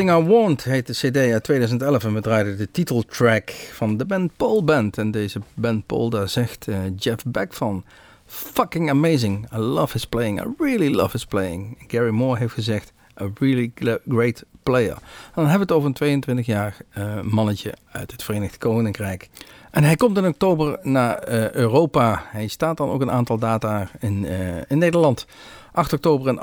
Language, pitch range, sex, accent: Dutch, 110-150 Hz, male, Dutch